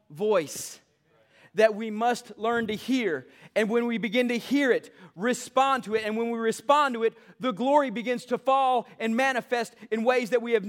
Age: 30-49